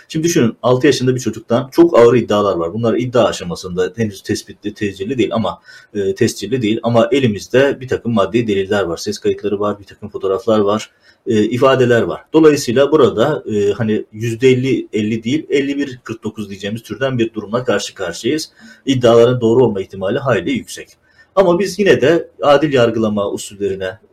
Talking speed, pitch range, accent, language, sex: 160 wpm, 110-135 Hz, native, Turkish, male